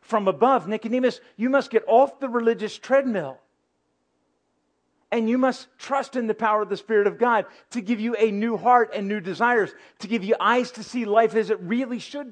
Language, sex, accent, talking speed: English, male, American, 205 wpm